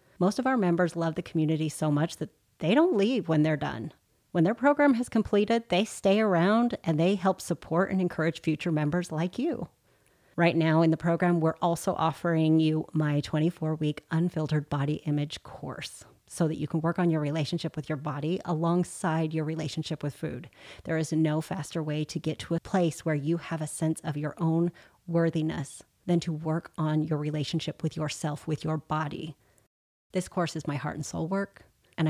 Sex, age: female, 30-49